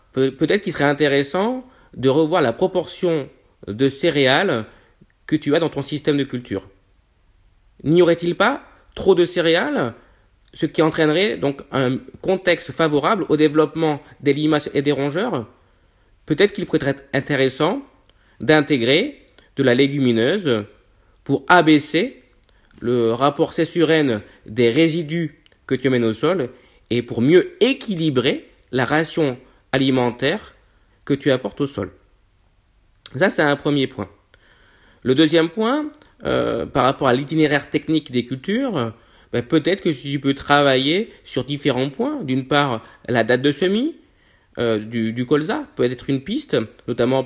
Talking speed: 145 wpm